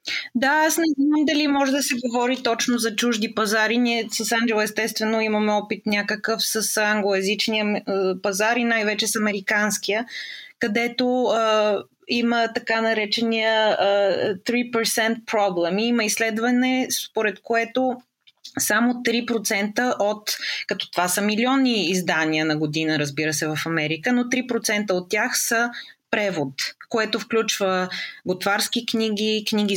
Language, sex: Bulgarian, female